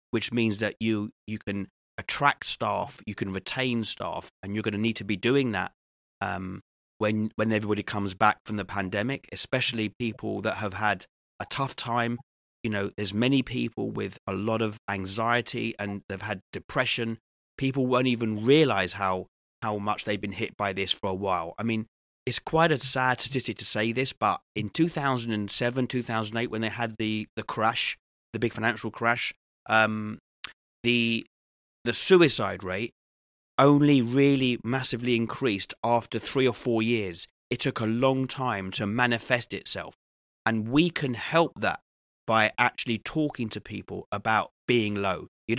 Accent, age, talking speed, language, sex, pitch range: British, 30-49, 165 wpm, English, male, 105-125 Hz